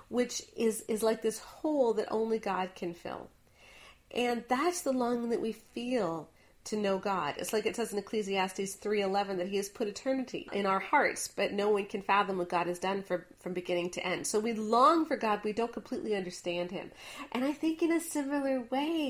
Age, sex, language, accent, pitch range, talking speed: 40-59, female, English, American, 205-270 Hz, 205 wpm